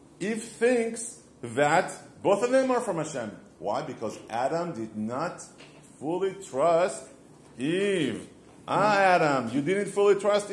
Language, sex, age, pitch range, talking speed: English, male, 40-59, 140-210 Hz, 130 wpm